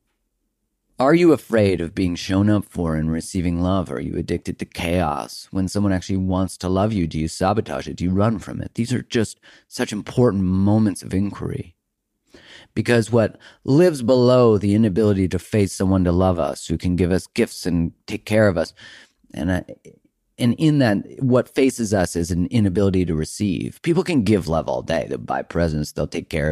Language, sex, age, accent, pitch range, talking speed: English, male, 40-59, American, 85-105 Hz, 195 wpm